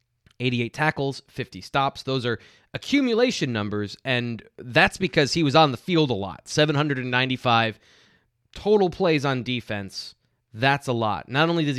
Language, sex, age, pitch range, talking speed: English, male, 20-39, 115-150 Hz, 150 wpm